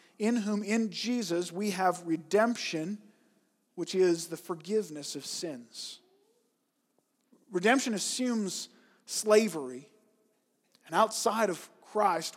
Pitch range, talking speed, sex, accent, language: 185-245 Hz, 95 wpm, male, American, English